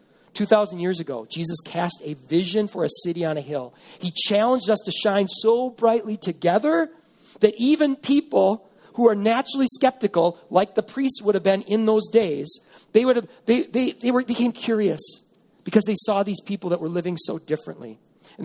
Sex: male